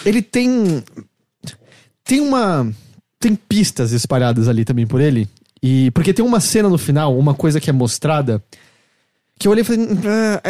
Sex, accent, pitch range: male, Brazilian, 130-185 Hz